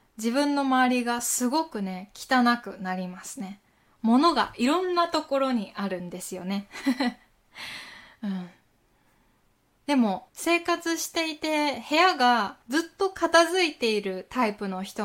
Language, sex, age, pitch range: Japanese, female, 20-39, 205-285 Hz